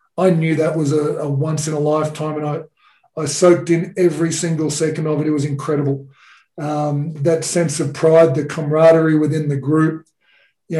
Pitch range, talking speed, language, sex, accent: 150-165 Hz, 190 wpm, English, male, Australian